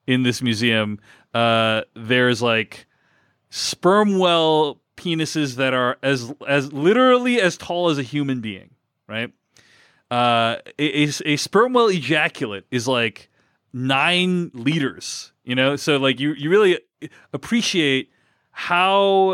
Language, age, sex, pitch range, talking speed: English, 30-49, male, 115-155 Hz, 135 wpm